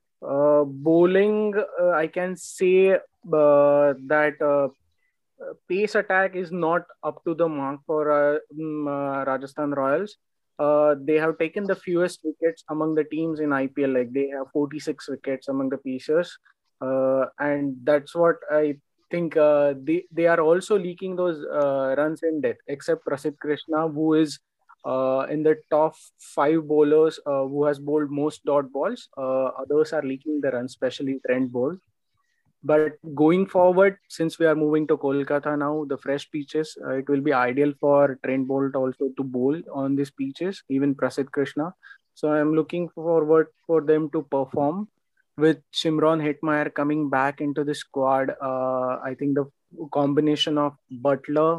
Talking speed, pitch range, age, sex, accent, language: 165 wpm, 140-160 Hz, 20-39, male, Indian, English